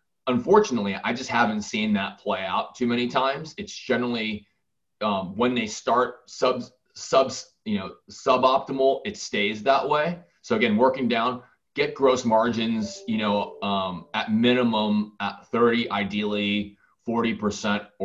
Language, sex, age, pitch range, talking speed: English, male, 30-49, 105-165 Hz, 140 wpm